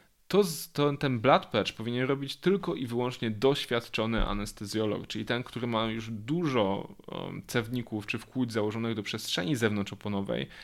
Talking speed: 135 wpm